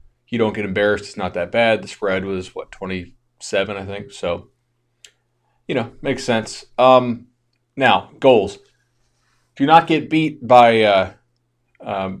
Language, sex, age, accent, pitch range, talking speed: English, male, 30-49, American, 100-125 Hz, 150 wpm